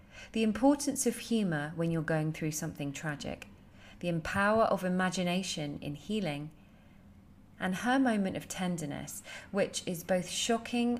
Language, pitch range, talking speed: English, 155-215 Hz, 135 wpm